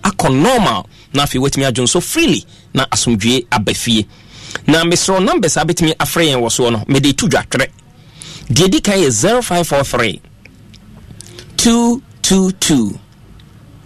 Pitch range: 115-170 Hz